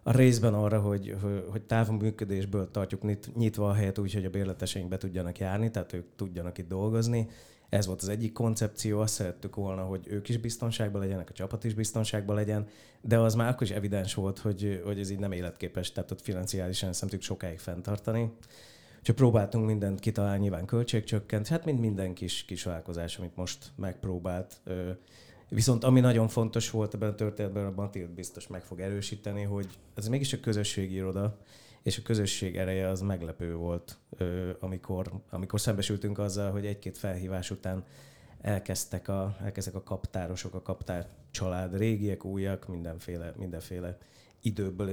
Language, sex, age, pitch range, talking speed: Hungarian, male, 30-49, 95-110 Hz, 165 wpm